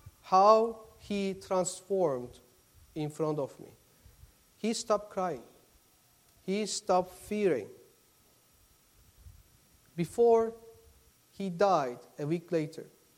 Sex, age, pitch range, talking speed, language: male, 50-69, 175-235 Hz, 85 wpm, English